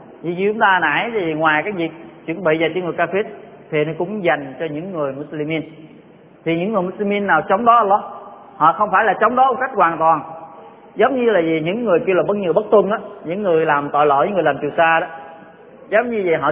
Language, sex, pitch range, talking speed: Vietnamese, male, 160-205 Hz, 250 wpm